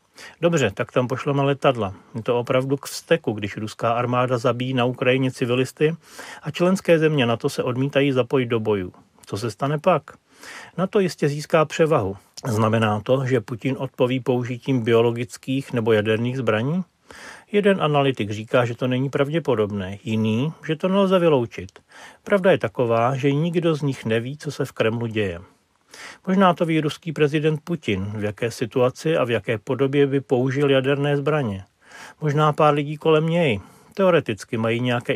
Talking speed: 160 wpm